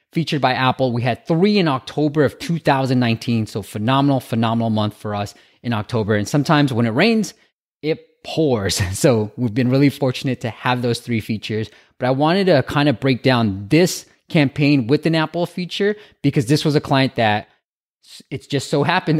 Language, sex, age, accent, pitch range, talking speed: English, male, 20-39, American, 120-175 Hz, 185 wpm